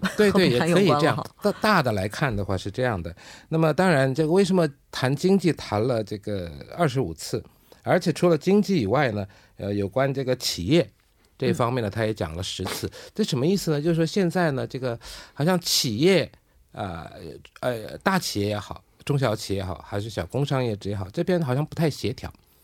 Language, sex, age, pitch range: Korean, male, 50-69, 105-150 Hz